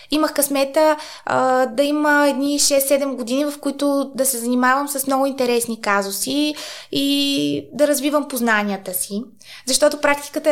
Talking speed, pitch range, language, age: 130 wpm, 245-305 Hz, Bulgarian, 20-39